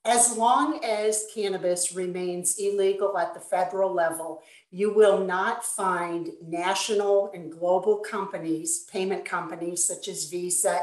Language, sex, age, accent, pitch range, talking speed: English, female, 50-69, American, 175-205 Hz, 125 wpm